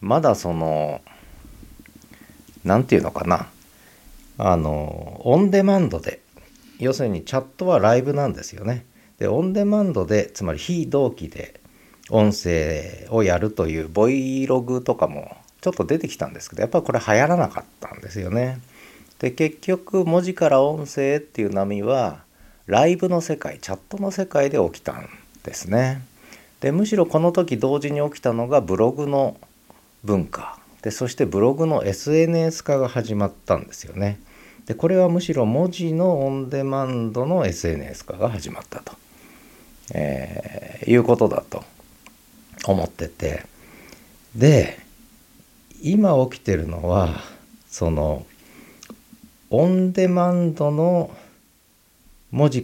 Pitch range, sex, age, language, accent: 105-165 Hz, male, 40-59, Japanese, native